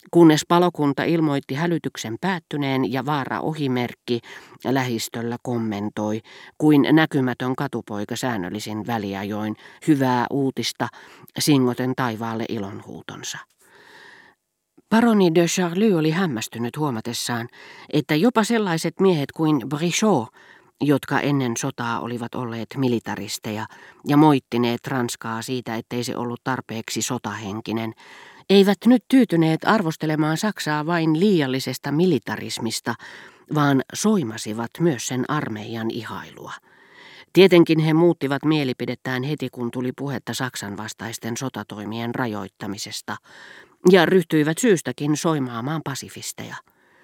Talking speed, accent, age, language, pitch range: 100 wpm, native, 40-59, Finnish, 115-160 Hz